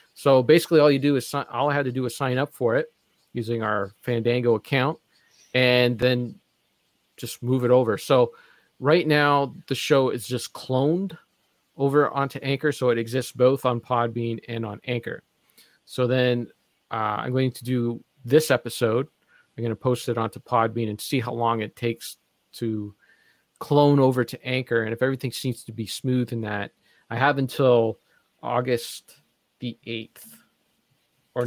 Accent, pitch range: American, 115-140 Hz